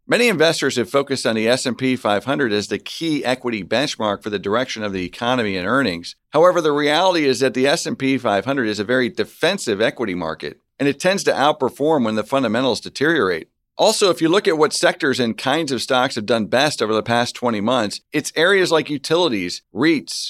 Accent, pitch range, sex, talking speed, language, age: American, 110-145 Hz, male, 200 wpm, English, 40-59